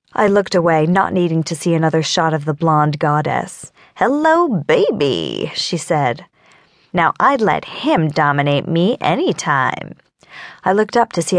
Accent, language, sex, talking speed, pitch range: American, English, female, 155 wpm, 165-245 Hz